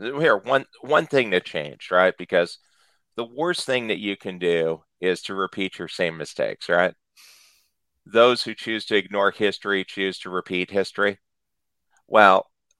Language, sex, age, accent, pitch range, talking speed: English, male, 40-59, American, 95-115 Hz, 155 wpm